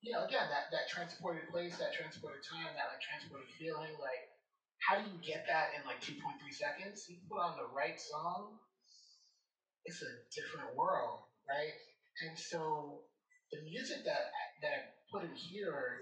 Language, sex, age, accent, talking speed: English, male, 30-49, American, 175 wpm